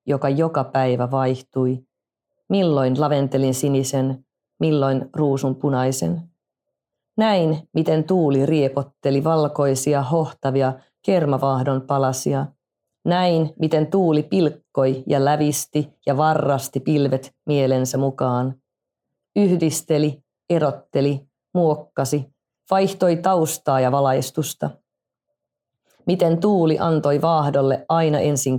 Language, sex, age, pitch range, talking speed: Finnish, female, 30-49, 135-165 Hz, 90 wpm